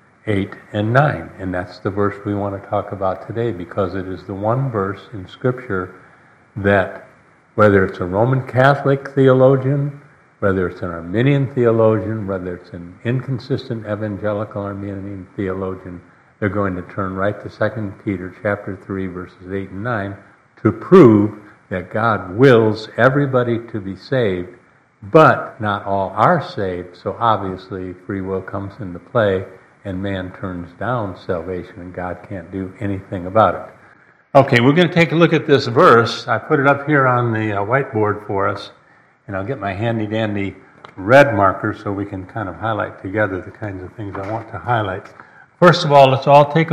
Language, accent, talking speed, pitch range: English, American, 175 wpm, 95-125 Hz